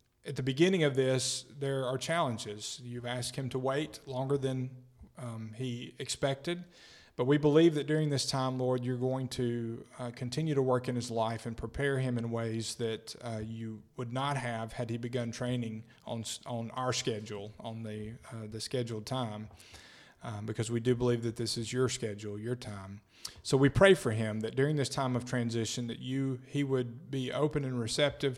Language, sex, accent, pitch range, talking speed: English, male, American, 115-135 Hz, 195 wpm